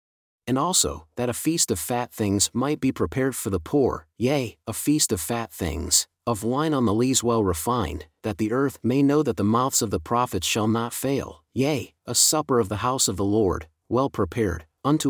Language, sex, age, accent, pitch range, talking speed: English, male, 40-59, American, 100-130 Hz, 210 wpm